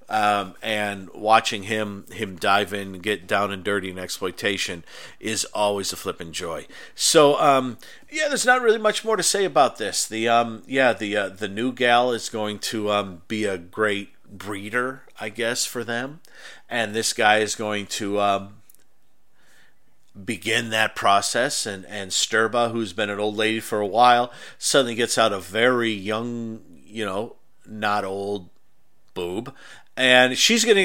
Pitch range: 105-145 Hz